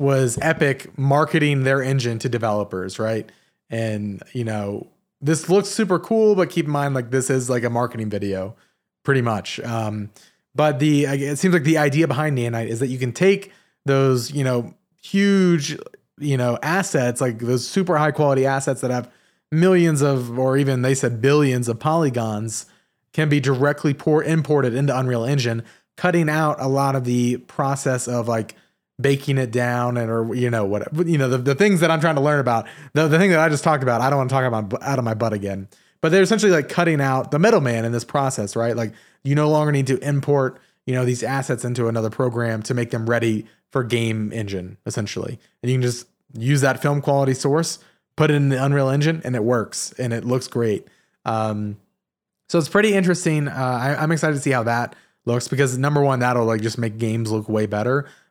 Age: 30-49